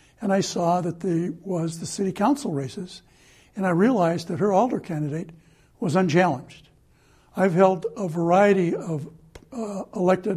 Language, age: English, 60-79